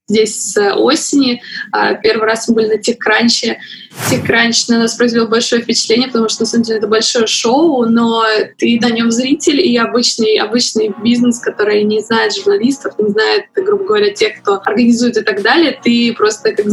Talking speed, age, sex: 175 wpm, 20-39, female